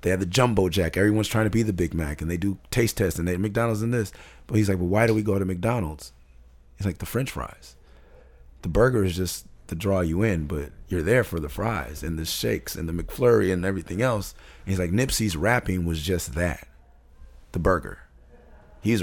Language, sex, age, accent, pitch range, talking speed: English, male, 30-49, American, 80-100 Hz, 225 wpm